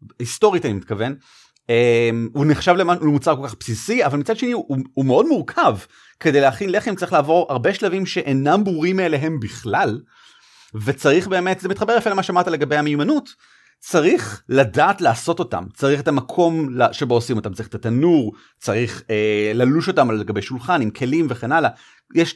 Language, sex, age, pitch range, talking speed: Hebrew, male, 30-49, 120-180 Hz, 170 wpm